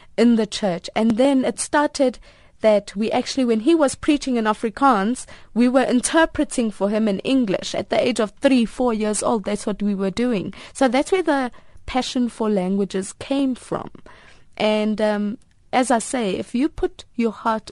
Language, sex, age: English, female, 20-39